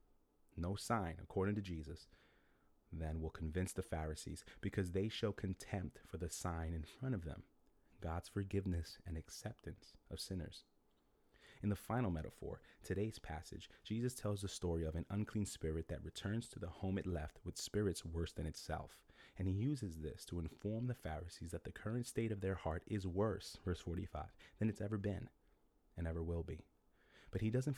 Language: English